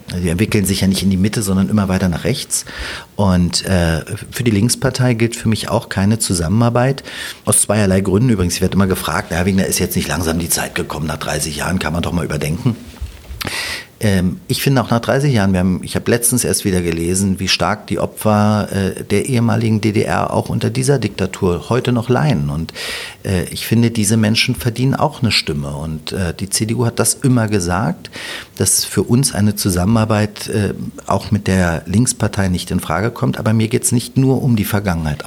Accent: German